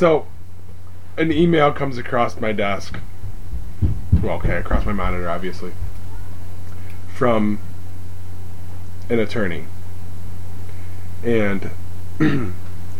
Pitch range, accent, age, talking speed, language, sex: 90-110 Hz, American, 20-39, 80 wpm, English, male